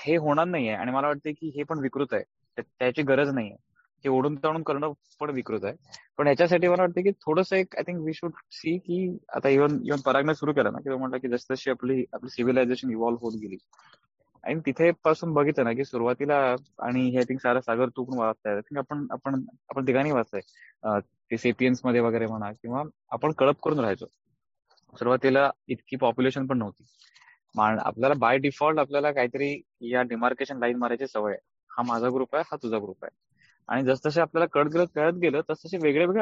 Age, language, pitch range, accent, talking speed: 20-39, Marathi, 125-155 Hz, native, 195 wpm